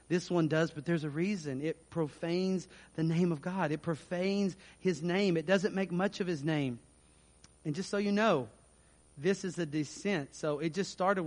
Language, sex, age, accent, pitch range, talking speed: English, male, 40-59, American, 115-165 Hz, 195 wpm